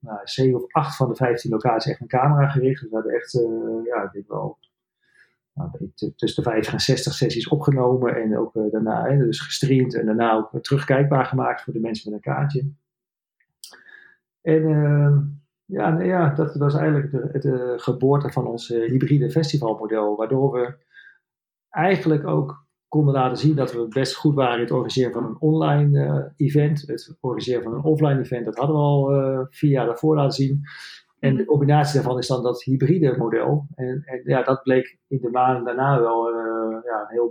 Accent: Dutch